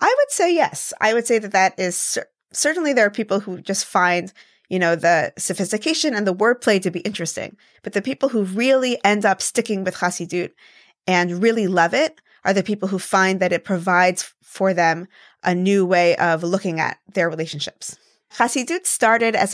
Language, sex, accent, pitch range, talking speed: English, female, American, 175-225 Hz, 195 wpm